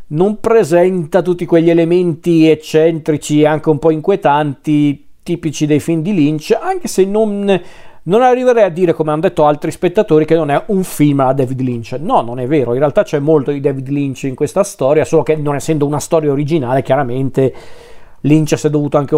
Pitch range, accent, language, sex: 140-165 Hz, native, Italian, male